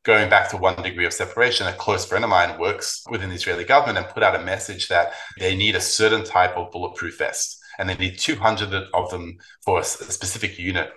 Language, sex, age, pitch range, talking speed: English, male, 30-49, 90-110 Hz, 225 wpm